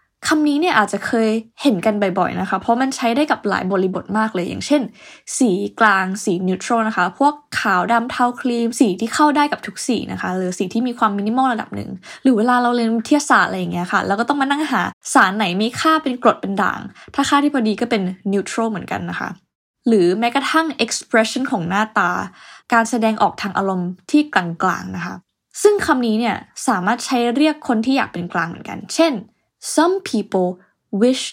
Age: 10-29